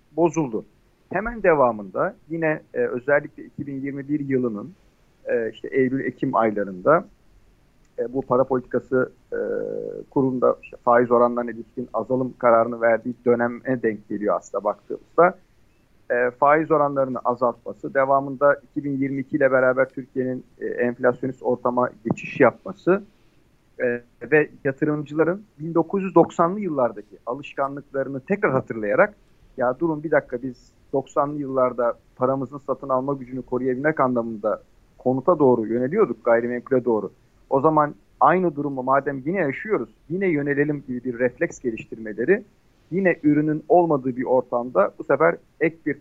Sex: male